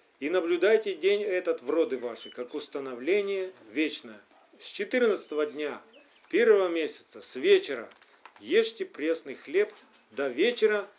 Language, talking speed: Russian, 120 wpm